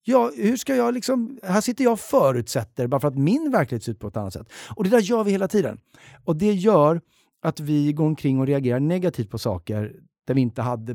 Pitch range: 110-155 Hz